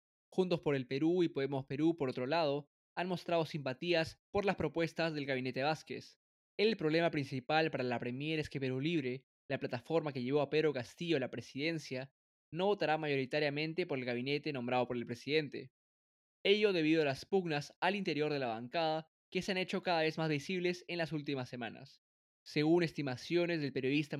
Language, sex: Spanish, male